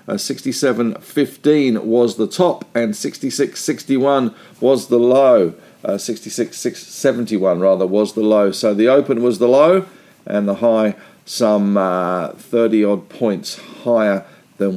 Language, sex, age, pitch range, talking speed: English, male, 50-69, 105-130 Hz, 130 wpm